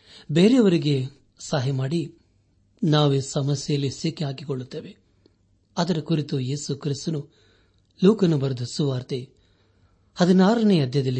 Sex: male